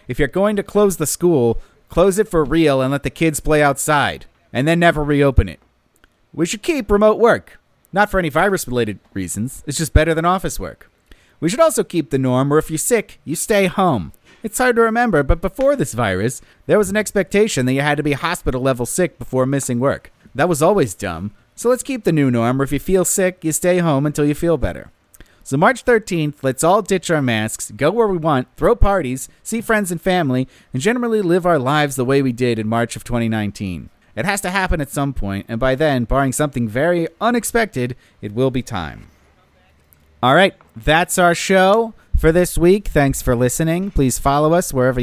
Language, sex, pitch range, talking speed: English, male, 125-185 Hz, 210 wpm